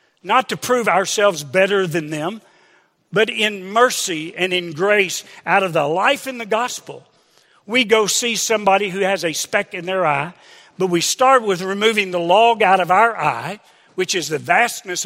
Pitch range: 170-225 Hz